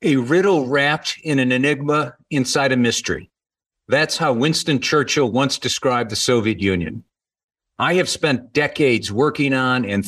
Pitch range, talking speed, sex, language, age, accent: 115-145 Hz, 150 wpm, male, English, 50-69, American